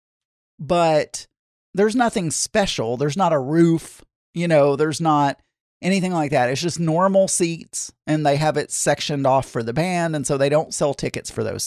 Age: 40-59